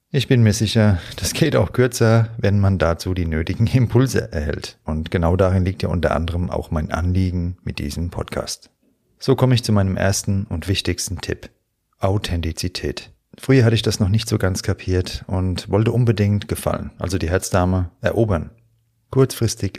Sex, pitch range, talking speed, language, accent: male, 85-110 Hz, 170 wpm, German, German